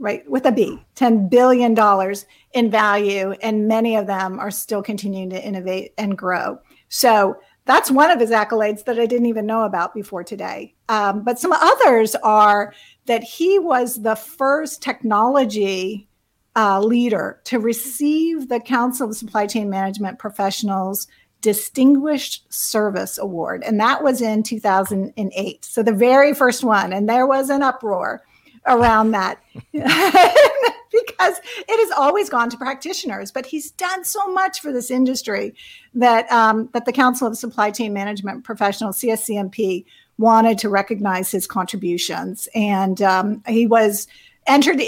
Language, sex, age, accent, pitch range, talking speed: English, female, 50-69, American, 205-260 Hz, 150 wpm